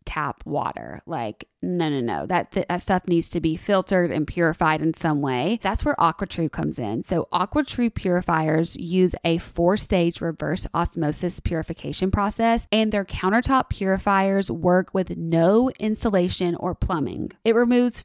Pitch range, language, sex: 175-220 Hz, English, female